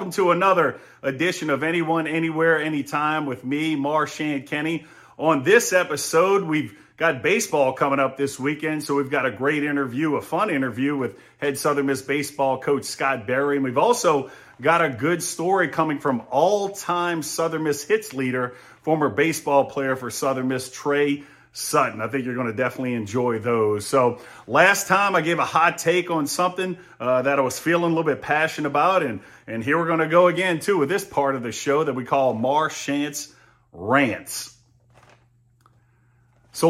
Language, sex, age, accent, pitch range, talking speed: English, male, 40-59, American, 130-160 Hz, 180 wpm